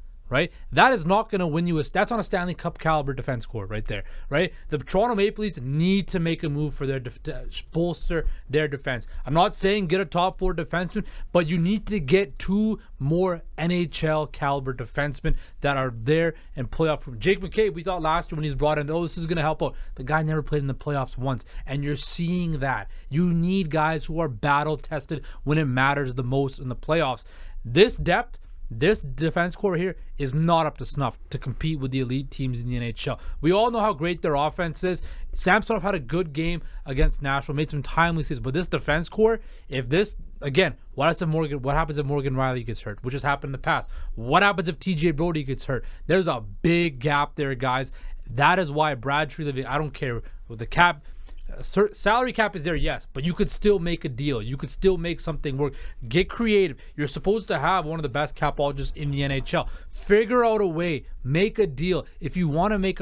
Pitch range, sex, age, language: 140-180 Hz, male, 30-49, English